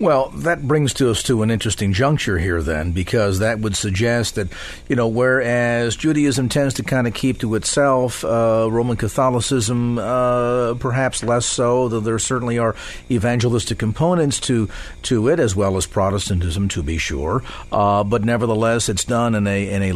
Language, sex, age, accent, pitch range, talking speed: English, male, 50-69, American, 105-130 Hz, 175 wpm